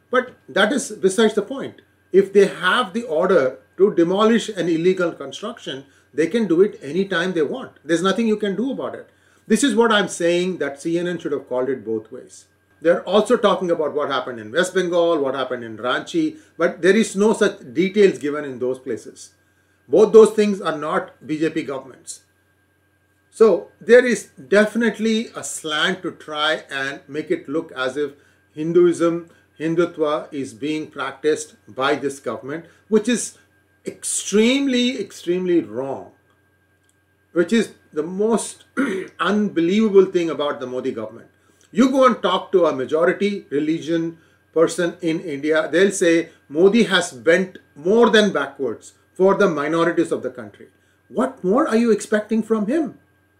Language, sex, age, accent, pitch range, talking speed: English, male, 40-59, Indian, 135-205 Hz, 160 wpm